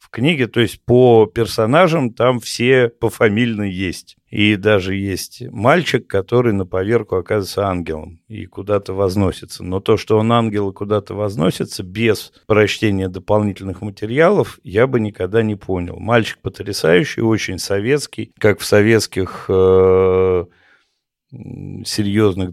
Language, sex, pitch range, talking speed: Russian, male, 95-115 Hz, 125 wpm